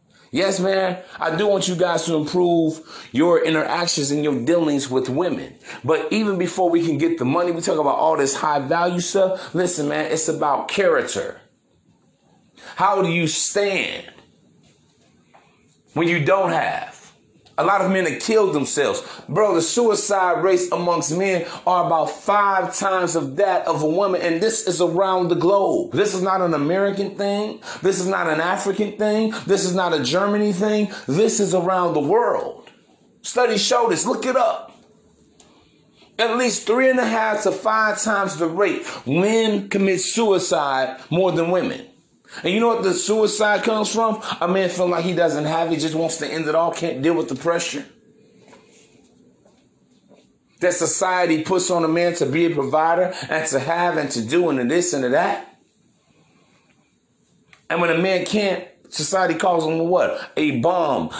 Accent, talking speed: American, 175 wpm